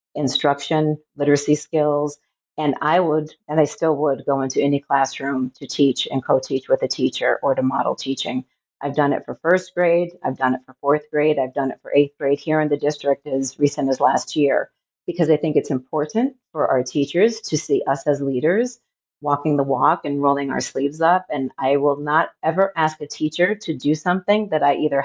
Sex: female